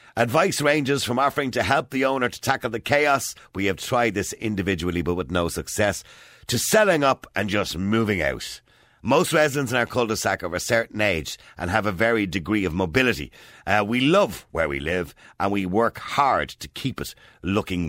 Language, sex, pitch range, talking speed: English, male, 90-130 Hz, 200 wpm